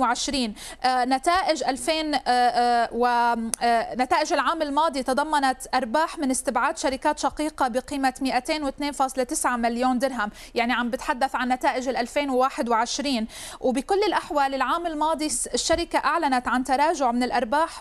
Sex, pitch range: female, 250-295 Hz